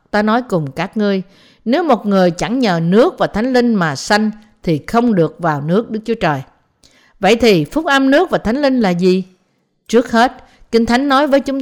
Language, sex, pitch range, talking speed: Vietnamese, female, 175-240 Hz, 210 wpm